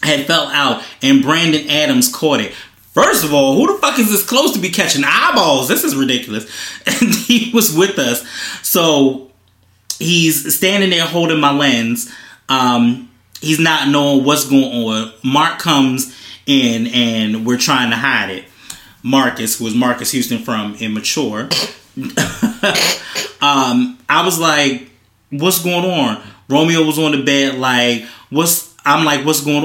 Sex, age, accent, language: male, 20-39, American, English